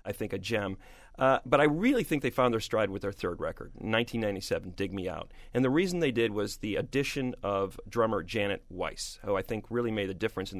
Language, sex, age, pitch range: English, male, 40-59, 115-145 Hz